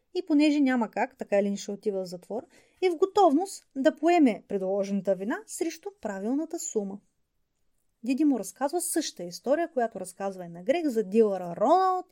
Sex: female